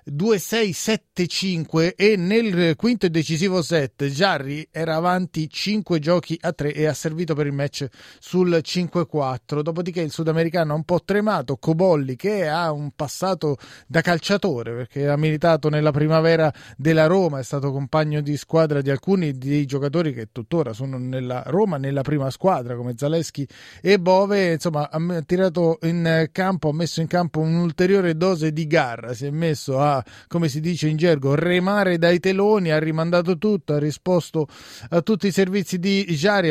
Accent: native